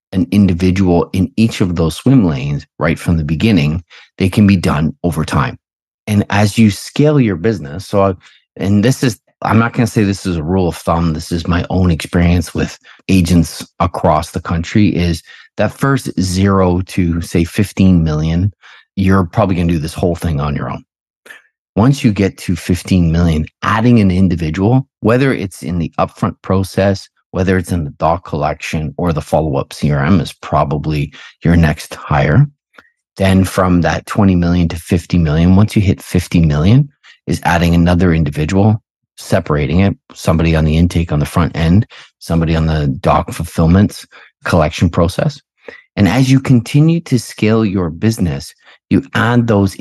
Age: 30-49